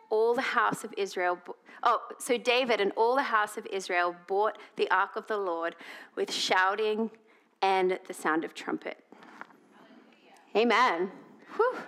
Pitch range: 215-280 Hz